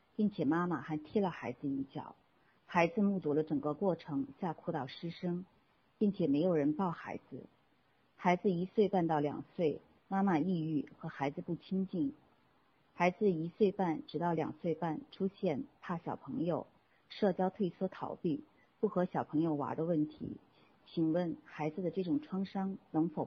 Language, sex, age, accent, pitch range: Chinese, female, 50-69, native, 150-190 Hz